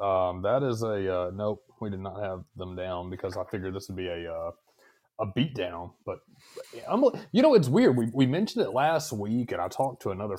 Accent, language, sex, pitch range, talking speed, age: American, English, male, 95-150 Hz, 225 wpm, 30-49